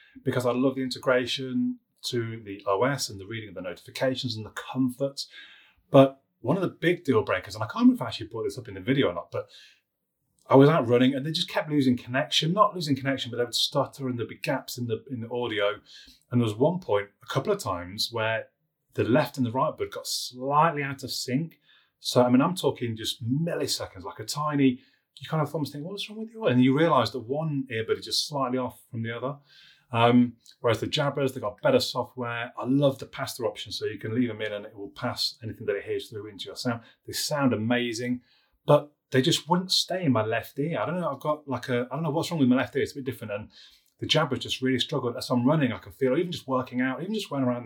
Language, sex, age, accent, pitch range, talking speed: English, male, 30-49, British, 120-150 Hz, 255 wpm